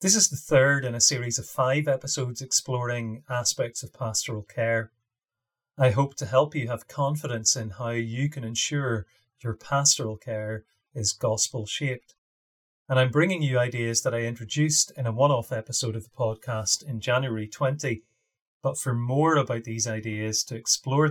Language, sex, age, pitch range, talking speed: English, male, 30-49, 110-135 Hz, 165 wpm